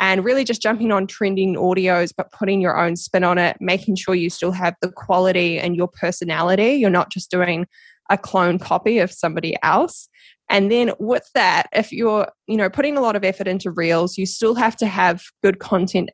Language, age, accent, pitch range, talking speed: English, 20-39, Australian, 180-220 Hz, 210 wpm